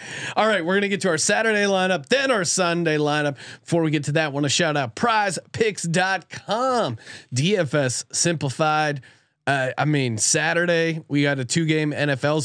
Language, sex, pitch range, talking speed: English, male, 140-180 Hz, 170 wpm